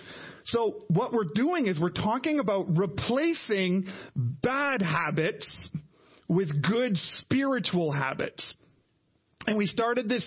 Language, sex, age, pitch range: English, male, 40-59, 170-215 Hz